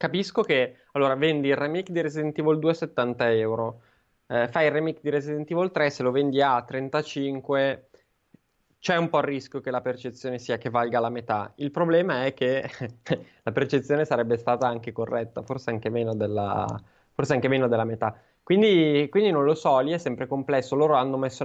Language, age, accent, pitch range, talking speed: Italian, 20-39, native, 115-140 Hz, 195 wpm